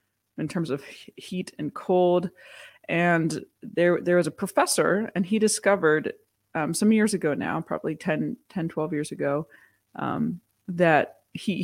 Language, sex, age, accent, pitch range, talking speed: English, female, 20-39, American, 160-200 Hz, 150 wpm